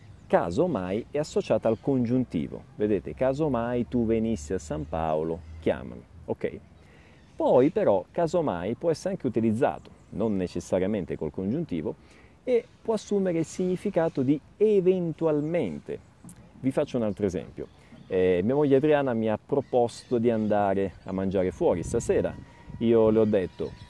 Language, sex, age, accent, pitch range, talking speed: Italian, male, 40-59, native, 95-150 Hz, 135 wpm